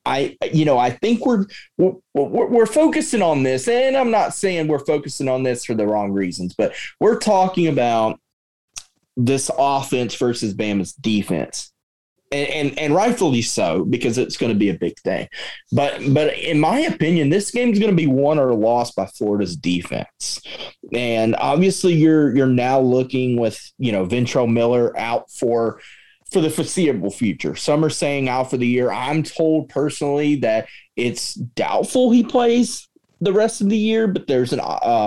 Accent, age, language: American, 30-49, English